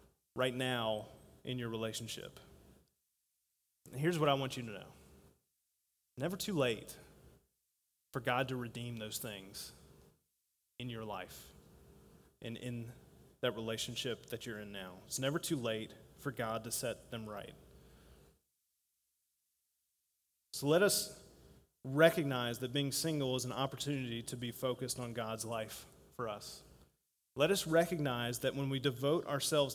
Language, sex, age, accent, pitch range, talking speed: English, male, 30-49, American, 110-155 Hz, 135 wpm